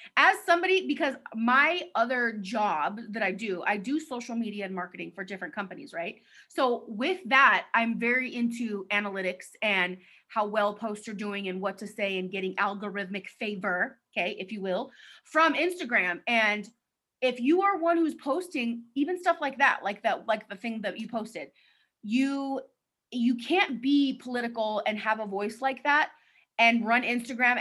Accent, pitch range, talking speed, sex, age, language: American, 210-265 Hz, 170 wpm, female, 30-49, English